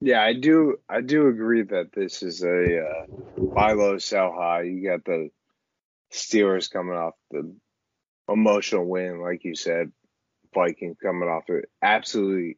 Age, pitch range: 20-39, 90-105 Hz